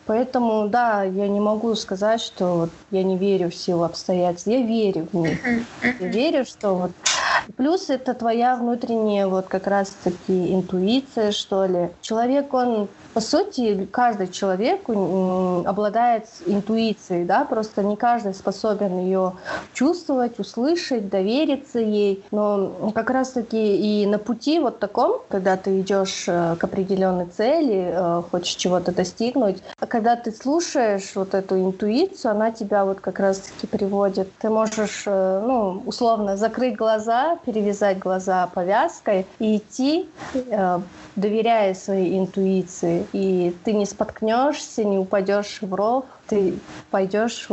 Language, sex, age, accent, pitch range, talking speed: Russian, female, 30-49, native, 190-230 Hz, 130 wpm